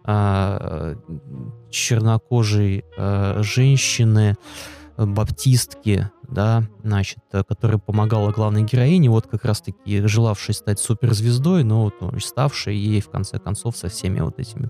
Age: 20-39